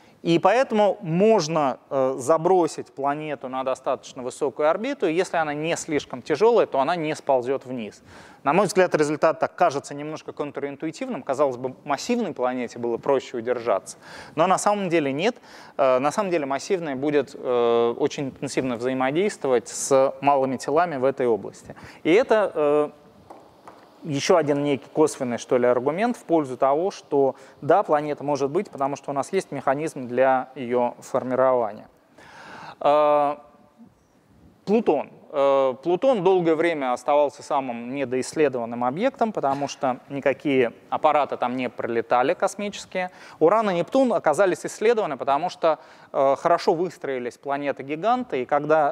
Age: 20-39